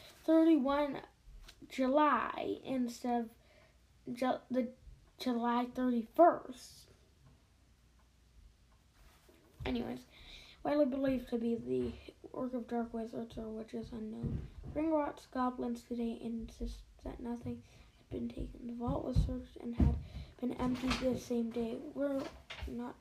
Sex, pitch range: female, 230-255 Hz